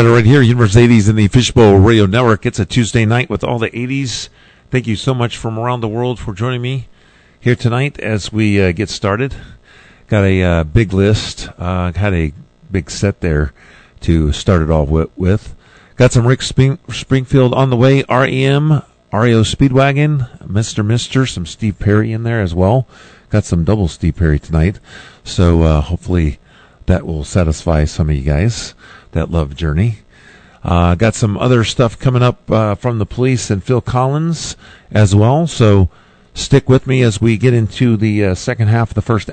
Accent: American